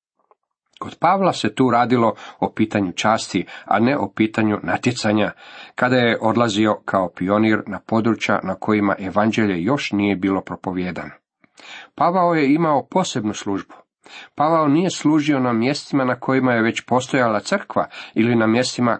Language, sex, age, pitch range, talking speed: Croatian, male, 40-59, 100-125 Hz, 145 wpm